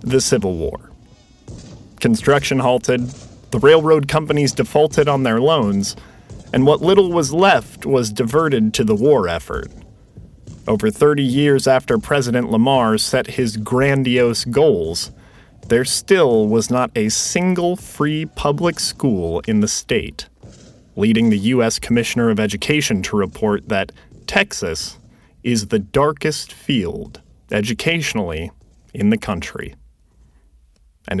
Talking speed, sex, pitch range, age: 125 wpm, male, 110-150 Hz, 30-49